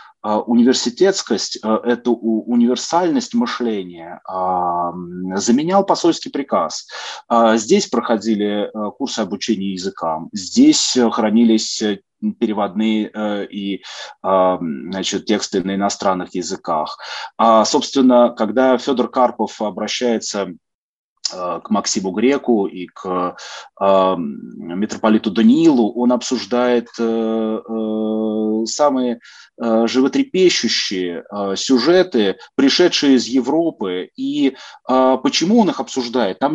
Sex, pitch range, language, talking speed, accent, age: male, 105-140 Hz, Russian, 75 wpm, native, 30-49